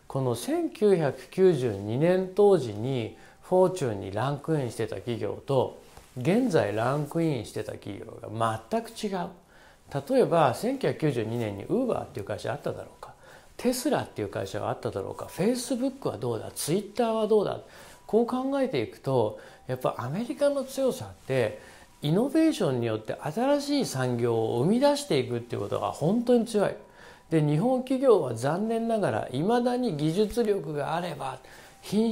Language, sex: Japanese, male